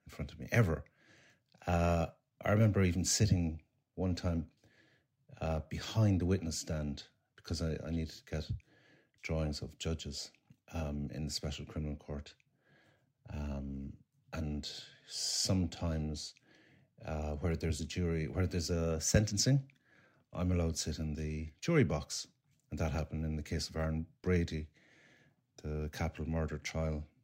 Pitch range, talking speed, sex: 80-120 Hz, 145 wpm, male